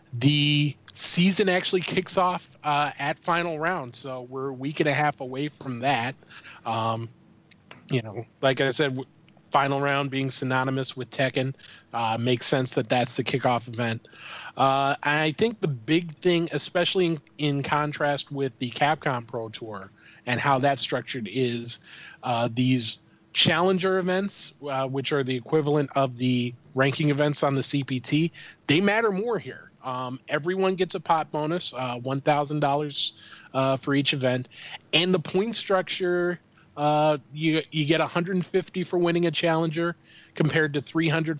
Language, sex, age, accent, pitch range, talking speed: English, male, 20-39, American, 130-165 Hz, 155 wpm